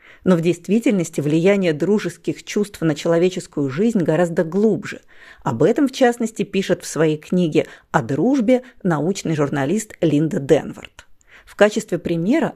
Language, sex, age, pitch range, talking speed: Russian, female, 40-59, 160-220 Hz, 135 wpm